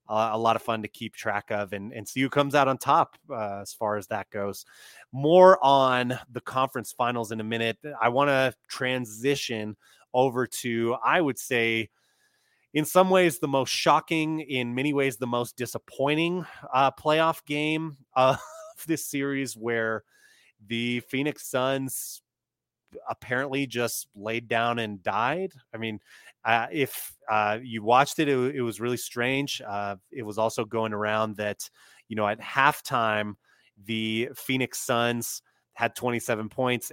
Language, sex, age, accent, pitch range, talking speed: English, male, 30-49, American, 110-135 Hz, 160 wpm